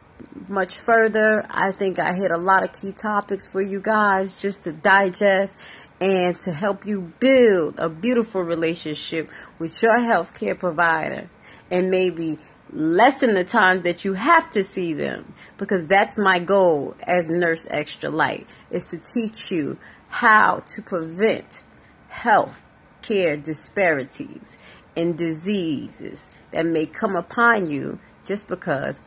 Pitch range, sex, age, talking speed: 175-220 Hz, female, 40-59, 140 wpm